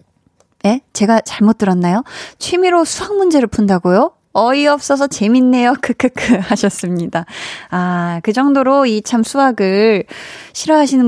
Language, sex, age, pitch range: Korean, female, 20-39, 190-275 Hz